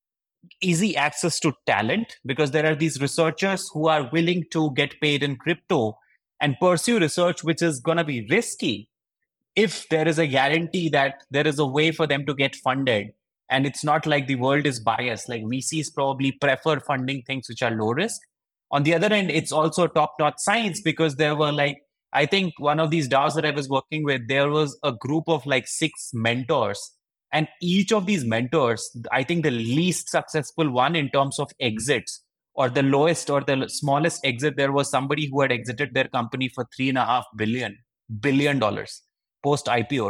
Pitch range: 130-160 Hz